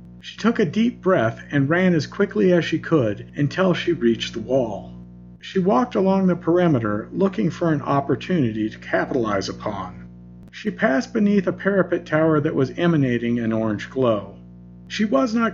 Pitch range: 120-185 Hz